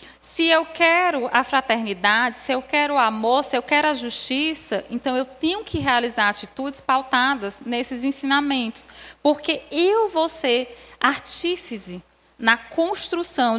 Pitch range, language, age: 230-300 Hz, Portuguese, 20-39